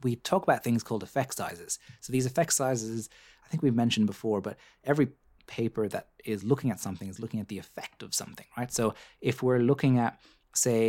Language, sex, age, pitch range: English, male, 30-49, 105-125 Hz